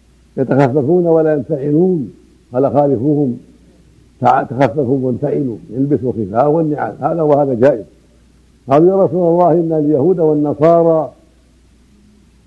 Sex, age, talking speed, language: male, 60-79, 95 wpm, Arabic